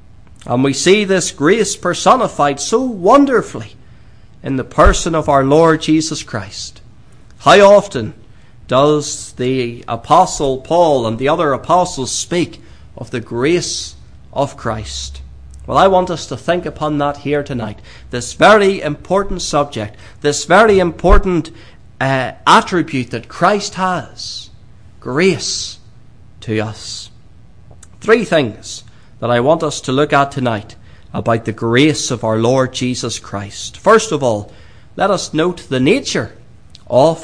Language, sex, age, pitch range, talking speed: English, male, 40-59, 110-160 Hz, 135 wpm